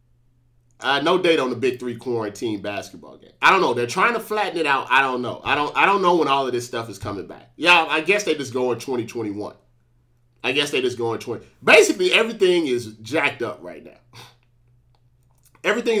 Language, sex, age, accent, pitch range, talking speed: English, male, 30-49, American, 120-145 Hz, 215 wpm